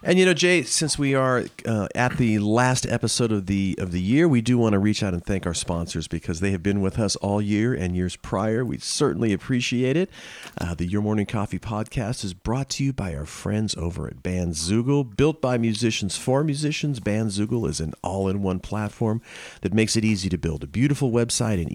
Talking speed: 215 wpm